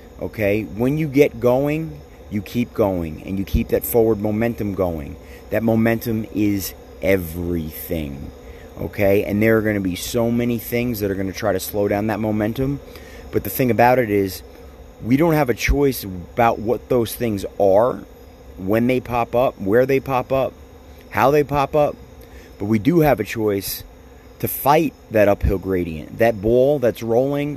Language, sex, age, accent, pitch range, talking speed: English, male, 30-49, American, 95-125 Hz, 180 wpm